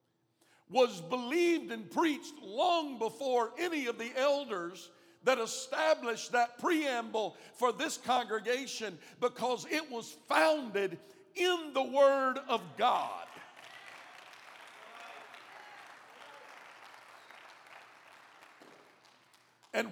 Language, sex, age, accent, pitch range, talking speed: English, male, 50-69, American, 215-280 Hz, 80 wpm